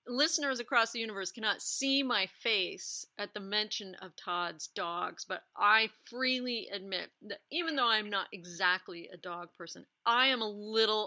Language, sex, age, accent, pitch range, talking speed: English, female, 40-59, American, 190-250 Hz, 170 wpm